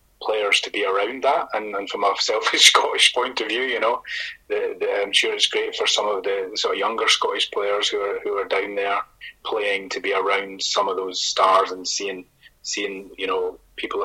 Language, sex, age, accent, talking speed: English, male, 20-39, British, 220 wpm